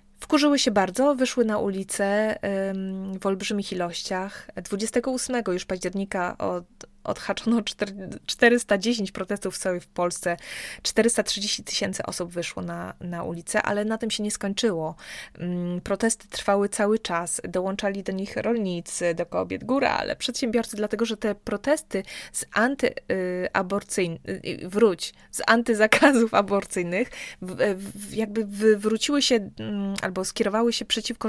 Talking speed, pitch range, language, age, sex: 130 wpm, 180-220 Hz, Polish, 20-39, female